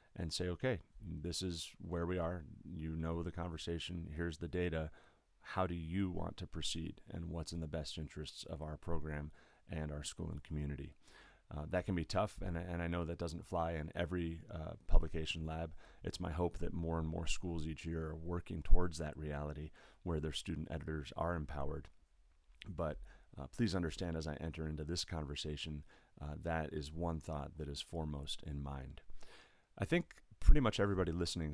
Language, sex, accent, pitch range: English, male, American, 75-85 Hz